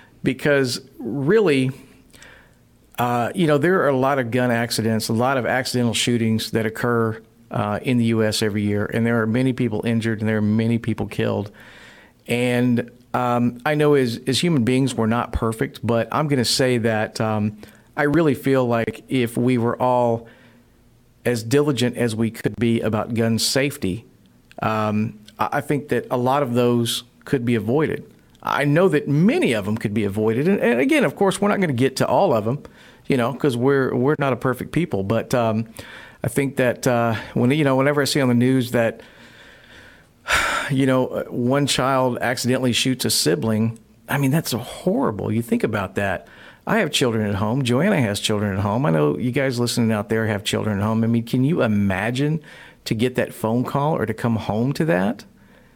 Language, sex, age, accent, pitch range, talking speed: English, male, 50-69, American, 110-135 Hz, 200 wpm